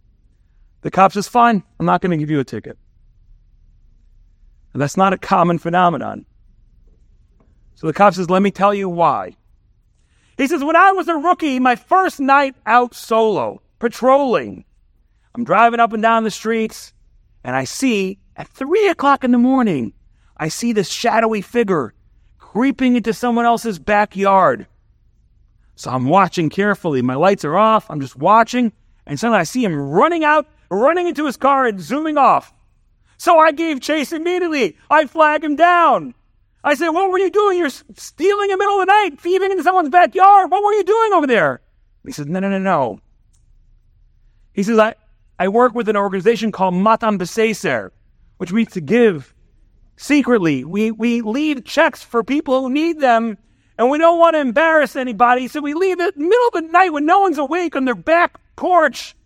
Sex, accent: male, American